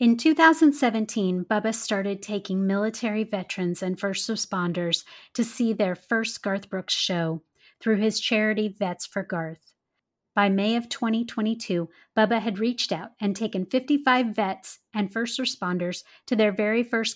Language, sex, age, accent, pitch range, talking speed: English, female, 30-49, American, 195-235 Hz, 145 wpm